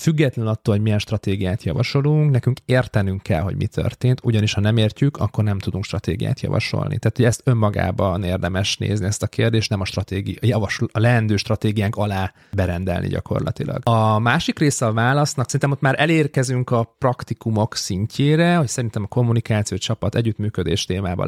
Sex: male